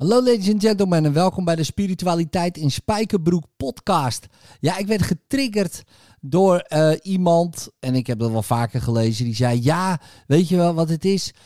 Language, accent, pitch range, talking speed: Dutch, Dutch, 140-185 Hz, 185 wpm